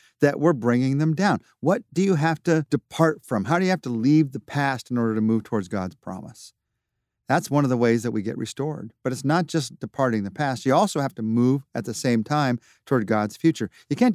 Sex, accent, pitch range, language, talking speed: male, American, 115-155 Hz, English, 240 wpm